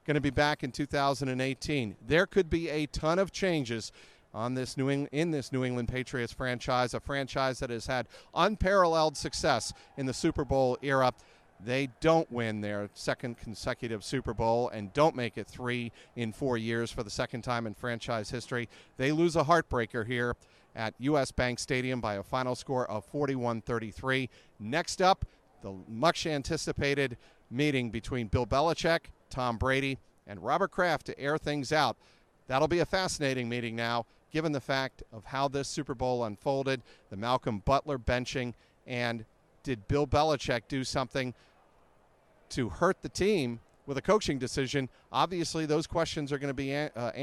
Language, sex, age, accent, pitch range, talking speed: English, male, 40-59, American, 120-145 Hz, 165 wpm